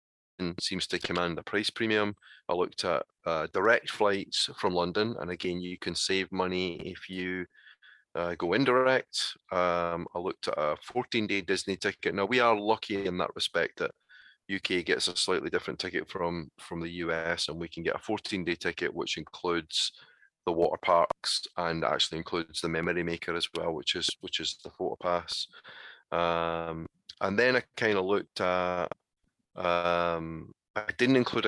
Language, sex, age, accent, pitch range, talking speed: English, male, 30-49, British, 85-95 Hz, 175 wpm